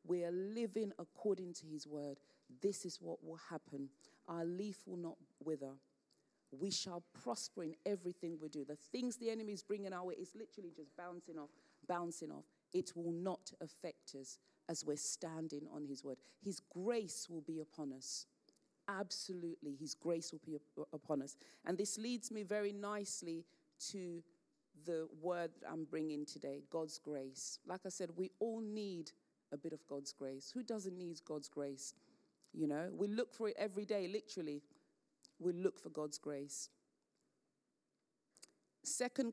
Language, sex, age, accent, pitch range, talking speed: English, female, 40-59, British, 150-200 Hz, 165 wpm